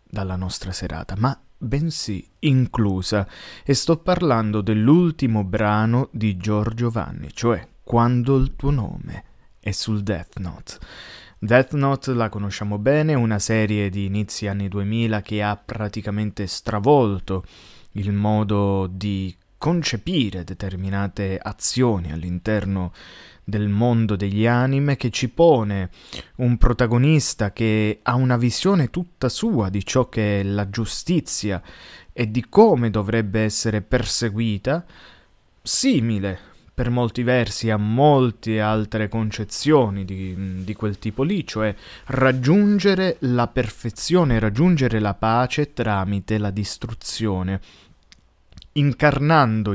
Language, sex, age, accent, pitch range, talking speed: Italian, male, 20-39, native, 100-125 Hz, 115 wpm